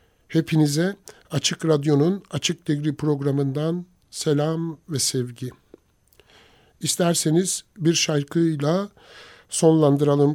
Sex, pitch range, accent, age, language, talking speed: male, 140-175 Hz, native, 60-79, Turkish, 75 wpm